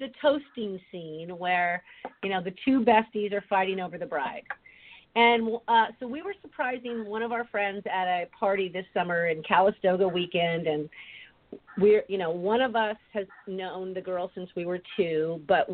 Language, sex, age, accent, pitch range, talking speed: English, female, 40-59, American, 170-210 Hz, 185 wpm